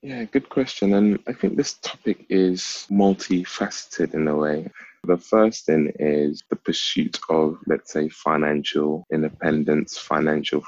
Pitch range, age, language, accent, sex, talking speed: 75-90 Hz, 20-39, English, British, male, 140 wpm